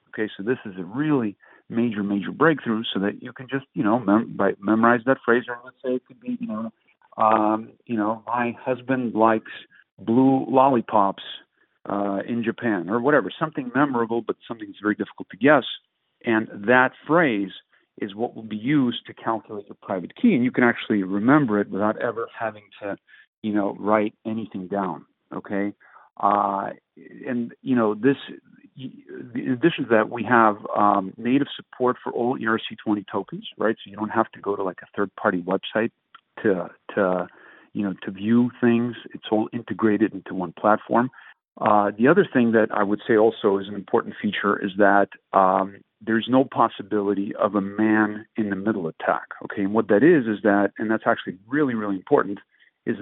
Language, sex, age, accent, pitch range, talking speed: English, male, 50-69, American, 105-125 Hz, 180 wpm